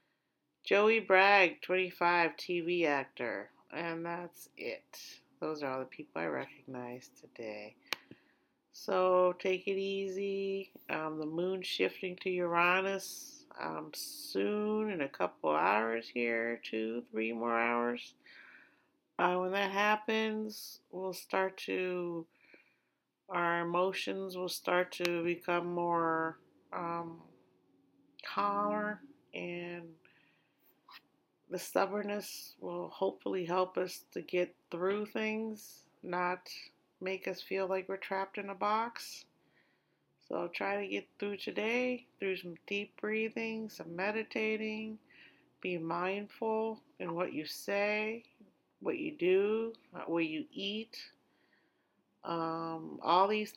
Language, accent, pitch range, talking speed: English, American, 170-210 Hz, 115 wpm